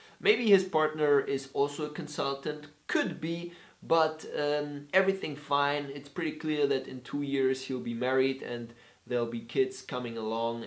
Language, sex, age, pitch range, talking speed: English, male, 20-39, 135-165 Hz, 165 wpm